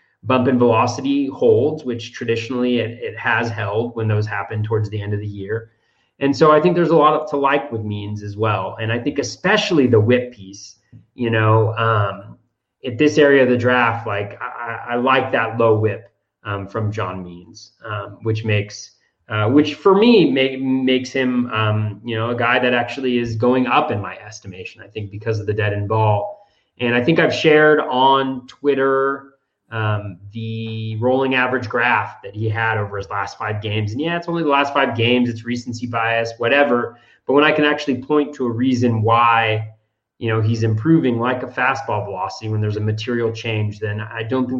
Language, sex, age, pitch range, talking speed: English, male, 30-49, 110-130 Hz, 200 wpm